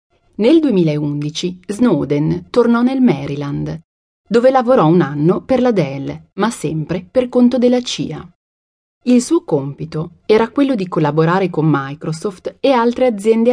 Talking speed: 140 wpm